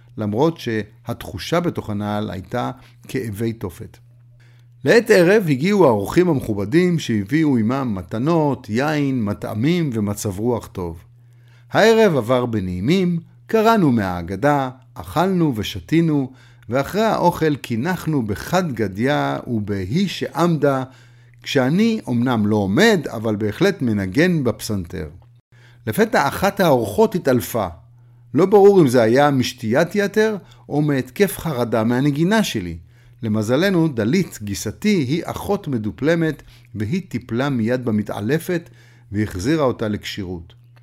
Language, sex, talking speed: Hebrew, male, 105 wpm